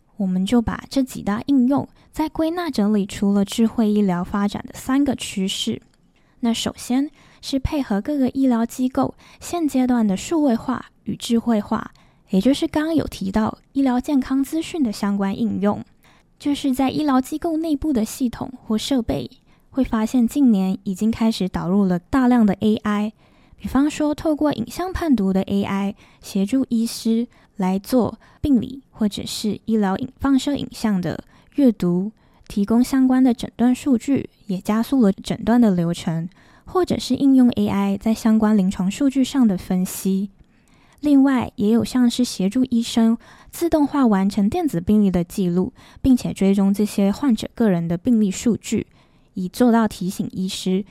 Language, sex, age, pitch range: Chinese, female, 10-29, 200-265 Hz